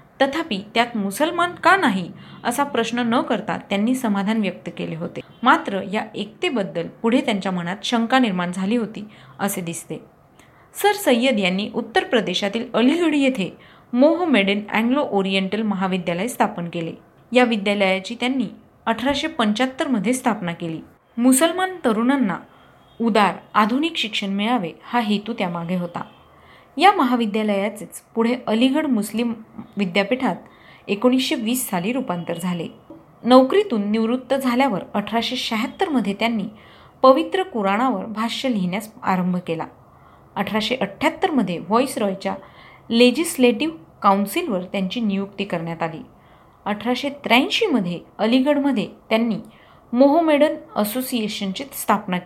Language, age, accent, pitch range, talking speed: Marathi, 30-49, native, 200-260 Hz, 105 wpm